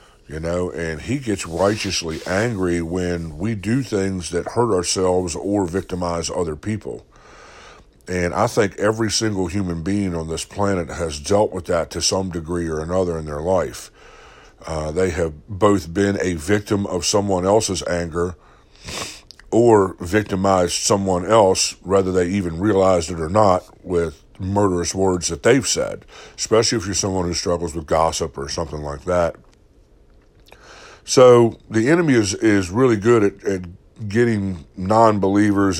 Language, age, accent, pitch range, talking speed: English, 60-79, American, 85-100 Hz, 155 wpm